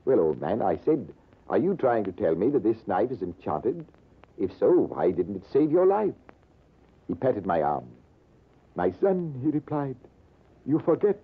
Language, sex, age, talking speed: English, male, 60-79, 180 wpm